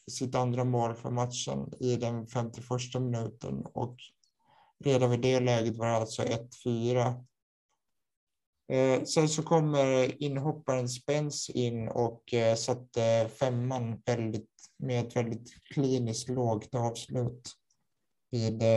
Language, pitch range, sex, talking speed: Swedish, 120-130 Hz, male, 110 wpm